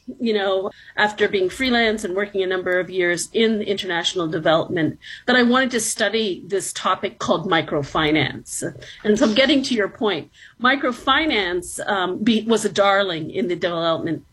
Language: English